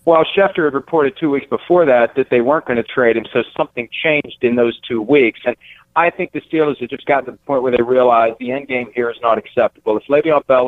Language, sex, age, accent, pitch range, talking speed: English, male, 50-69, American, 120-145 Hz, 260 wpm